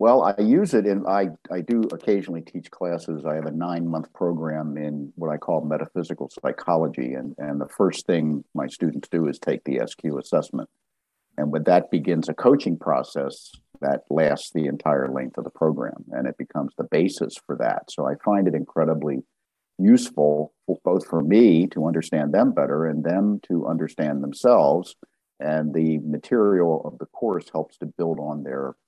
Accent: American